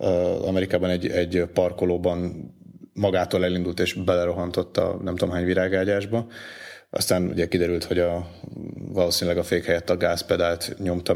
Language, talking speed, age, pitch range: Hungarian, 135 wpm, 30-49, 90-100 Hz